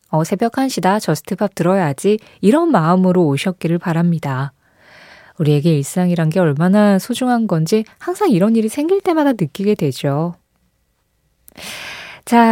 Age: 20-39